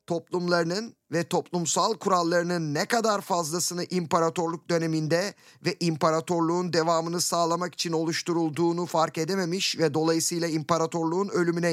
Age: 50-69